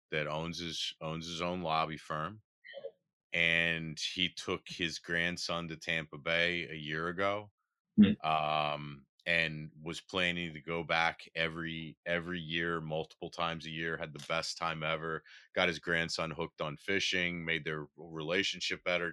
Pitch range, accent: 75-90 Hz, American